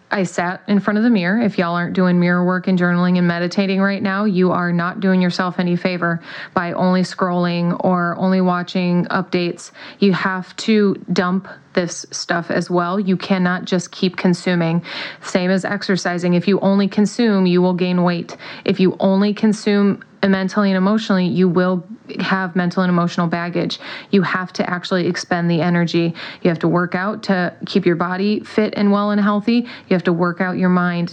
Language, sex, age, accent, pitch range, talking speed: English, female, 30-49, American, 180-210 Hz, 190 wpm